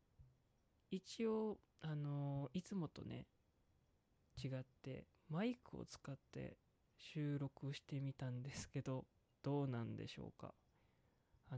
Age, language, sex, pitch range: 20-39, Japanese, male, 120-160 Hz